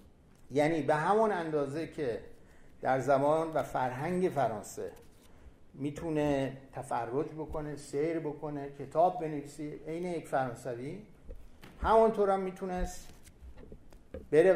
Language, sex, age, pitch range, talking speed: Persian, male, 60-79, 135-175 Hz, 100 wpm